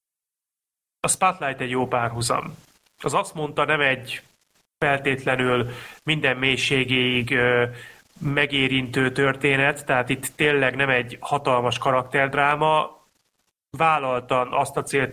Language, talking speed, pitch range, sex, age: Hungarian, 105 wpm, 125-150 Hz, male, 30-49